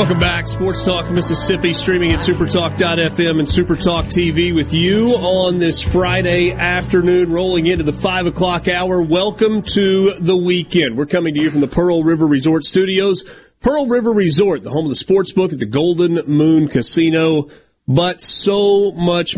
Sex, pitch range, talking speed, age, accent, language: male, 145-180 Hz, 170 wpm, 40-59, American, English